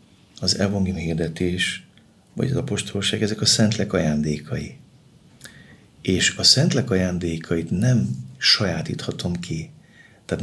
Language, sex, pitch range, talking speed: Hungarian, male, 80-115 Hz, 105 wpm